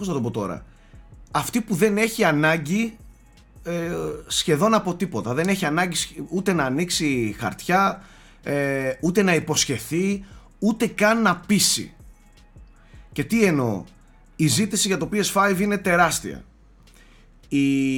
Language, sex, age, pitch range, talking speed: Greek, male, 30-49, 130-190 Hz, 135 wpm